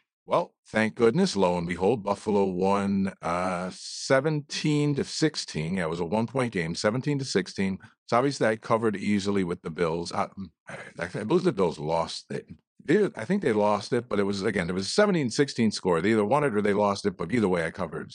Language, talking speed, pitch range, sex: English, 220 wpm, 90-135 Hz, male